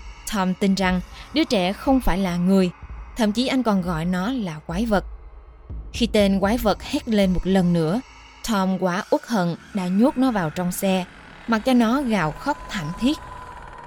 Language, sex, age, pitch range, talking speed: Vietnamese, female, 20-39, 180-225 Hz, 190 wpm